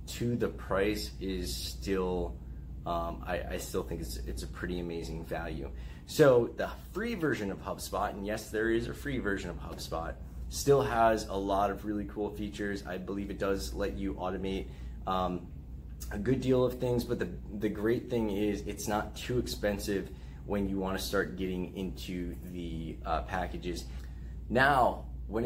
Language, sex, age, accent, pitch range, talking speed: English, male, 20-39, American, 80-105 Hz, 175 wpm